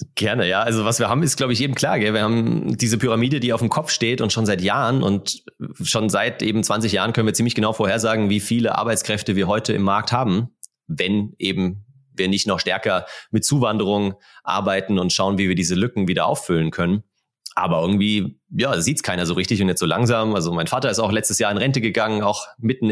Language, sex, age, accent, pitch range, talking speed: German, male, 30-49, German, 95-115 Hz, 225 wpm